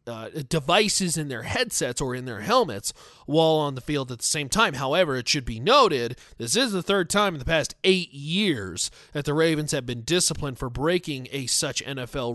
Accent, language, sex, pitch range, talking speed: American, English, male, 135-200 Hz, 210 wpm